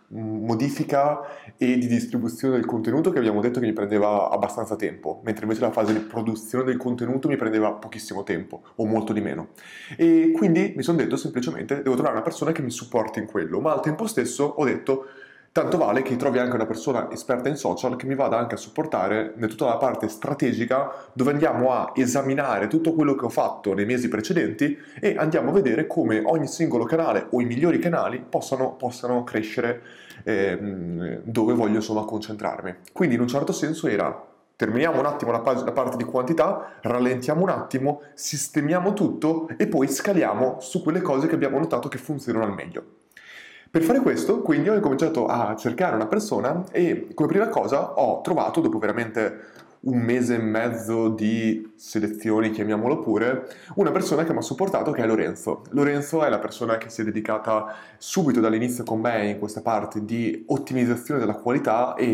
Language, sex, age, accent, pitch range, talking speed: Italian, male, 20-39, native, 110-140 Hz, 185 wpm